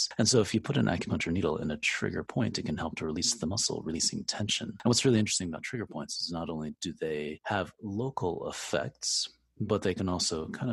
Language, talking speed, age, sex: English, 230 wpm, 30-49, male